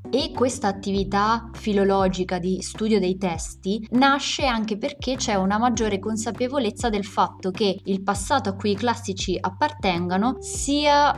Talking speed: 140 wpm